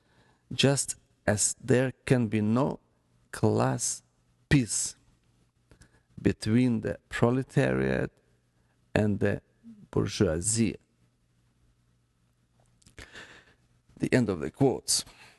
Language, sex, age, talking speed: English, male, 50-69, 75 wpm